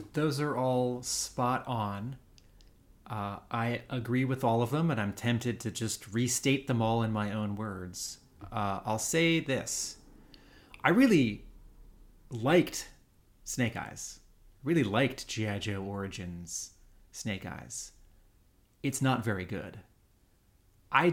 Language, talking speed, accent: English, 130 wpm, American